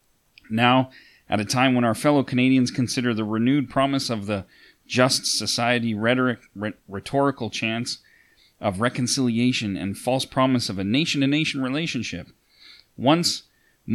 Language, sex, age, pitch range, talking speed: English, male, 40-59, 105-125 Hz, 125 wpm